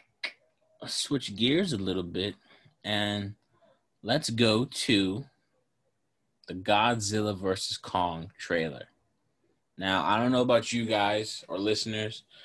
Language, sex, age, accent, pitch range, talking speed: English, male, 20-39, American, 100-115 Hz, 115 wpm